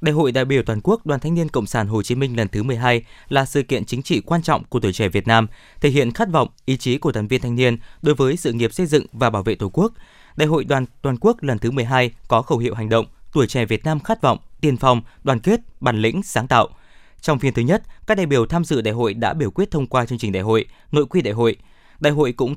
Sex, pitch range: male, 115-155 Hz